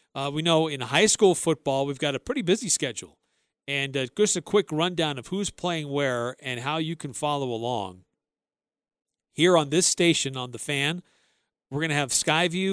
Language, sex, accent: English, male, American